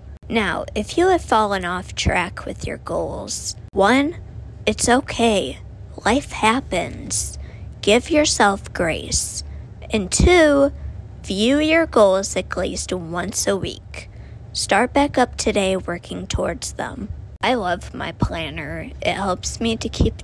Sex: female